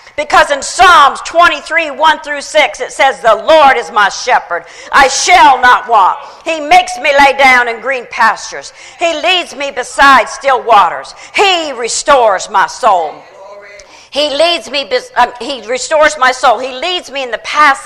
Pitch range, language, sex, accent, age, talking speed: 245-295 Hz, English, female, American, 50-69, 170 wpm